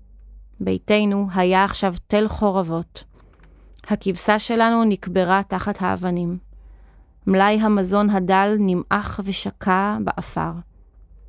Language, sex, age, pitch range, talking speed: Hebrew, female, 30-49, 180-225 Hz, 85 wpm